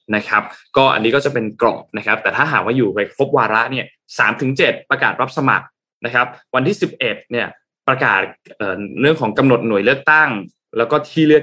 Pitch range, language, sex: 115-140 Hz, Thai, male